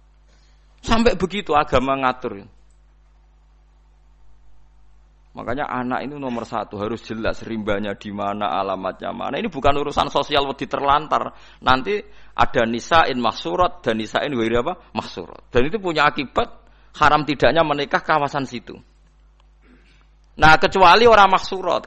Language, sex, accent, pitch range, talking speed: Indonesian, male, native, 95-145 Hz, 120 wpm